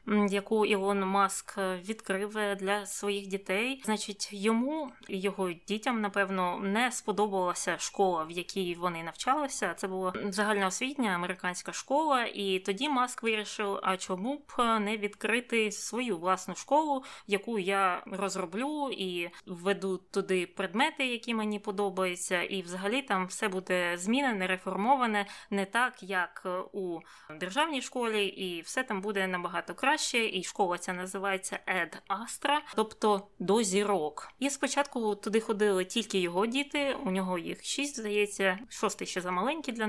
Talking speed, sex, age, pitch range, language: 140 wpm, female, 20-39, 190-230 Hz, Ukrainian